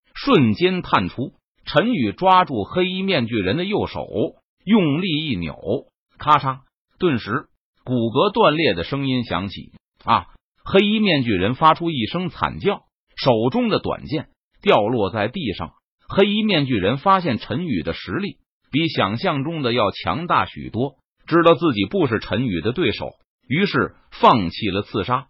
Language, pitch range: Chinese, 125-195 Hz